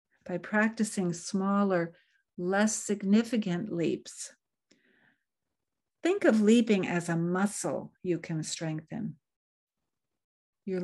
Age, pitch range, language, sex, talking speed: 60-79, 175-220 Hz, English, female, 90 wpm